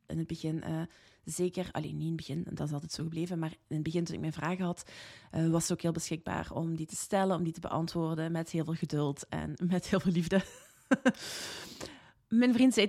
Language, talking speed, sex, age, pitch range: Dutch, 235 wpm, female, 20-39, 165-195 Hz